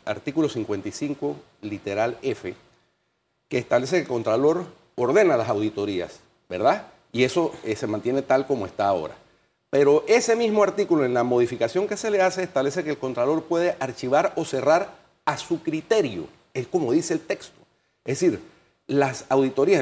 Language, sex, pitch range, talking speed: Spanish, male, 130-180 Hz, 160 wpm